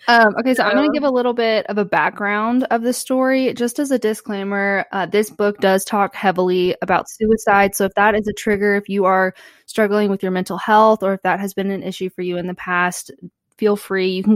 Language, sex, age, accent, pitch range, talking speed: English, female, 20-39, American, 180-220 Hz, 240 wpm